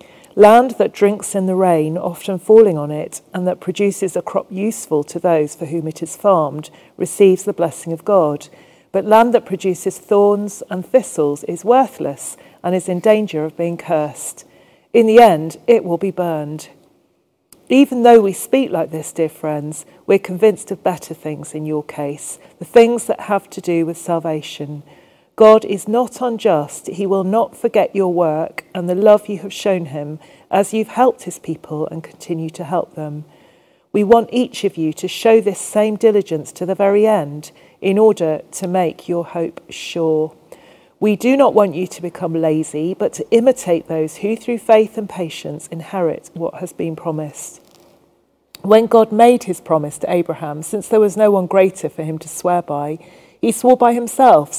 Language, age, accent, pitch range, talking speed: English, 40-59, British, 160-210 Hz, 185 wpm